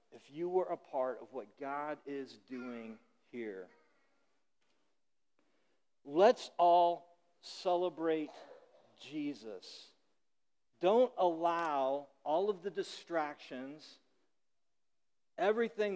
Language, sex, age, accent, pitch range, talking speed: English, male, 50-69, American, 125-170 Hz, 85 wpm